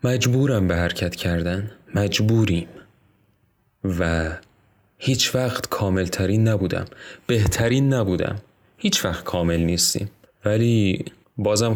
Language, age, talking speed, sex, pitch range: Persian, 30-49, 95 wpm, male, 100-125 Hz